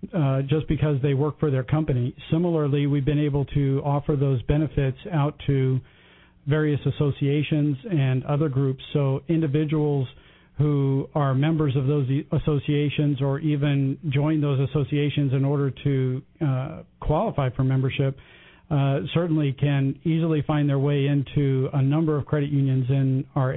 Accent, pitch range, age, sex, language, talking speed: American, 135-150 Hz, 50-69, male, English, 150 wpm